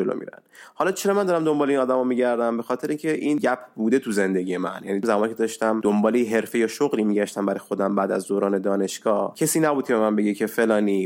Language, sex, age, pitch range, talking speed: Persian, male, 20-39, 105-130 Hz, 235 wpm